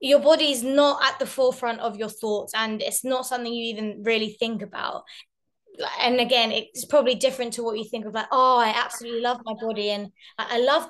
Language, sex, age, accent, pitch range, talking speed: English, female, 20-39, British, 220-265 Hz, 210 wpm